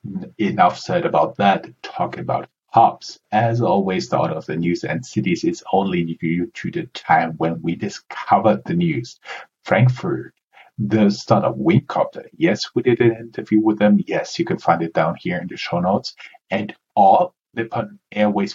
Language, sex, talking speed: English, male, 175 wpm